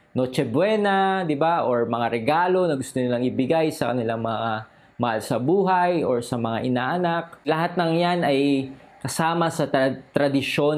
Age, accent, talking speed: 20-39, native, 160 wpm